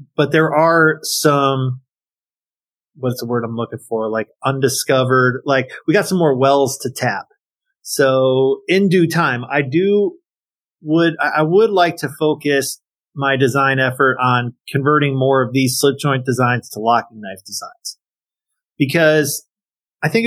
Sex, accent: male, American